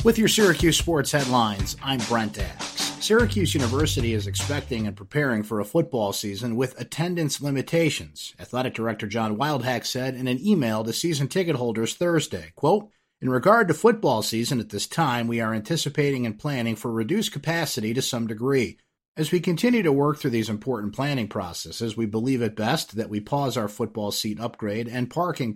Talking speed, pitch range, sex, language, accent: 180 wpm, 110-150 Hz, male, English, American